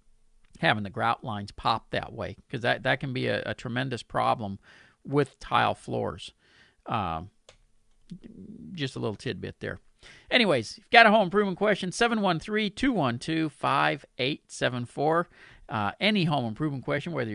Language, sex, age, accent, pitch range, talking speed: English, male, 50-69, American, 120-170 Hz, 135 wpm